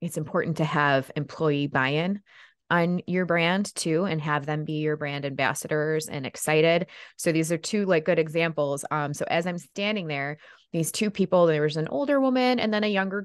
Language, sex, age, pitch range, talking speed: English, female, 20-39, 155-200 Hz, 200 wpm